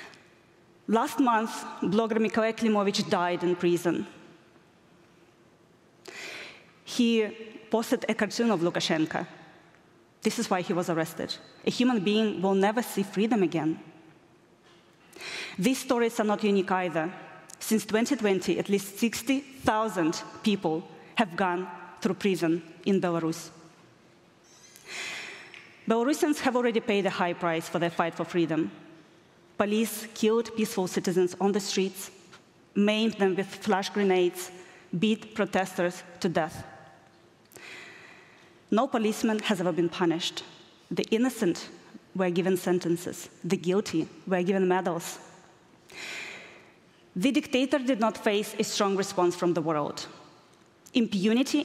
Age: 20-39